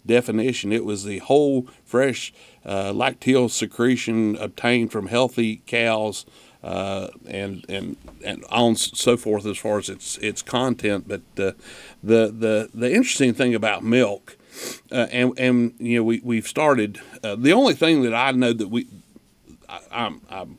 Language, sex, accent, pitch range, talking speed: English, male, American, 105-130 Hz, 160 wpm